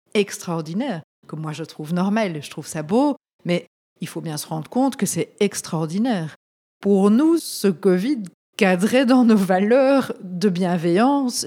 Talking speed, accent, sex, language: 155 wpm, French, female, French